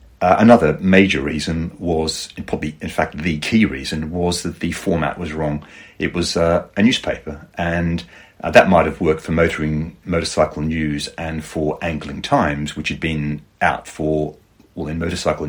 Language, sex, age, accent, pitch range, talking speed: English, male, 40-59, British, 75-90 Hz, 170 wpm